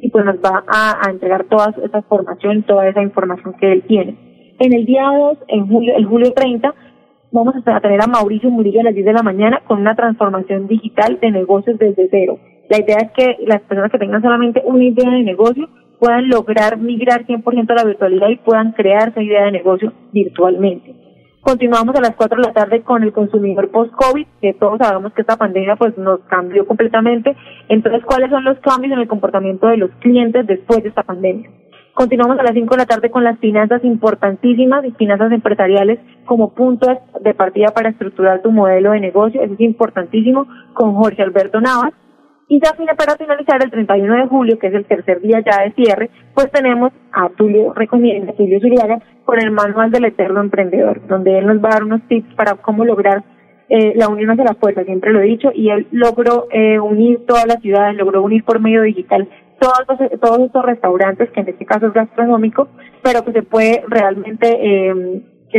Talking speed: 200 wpm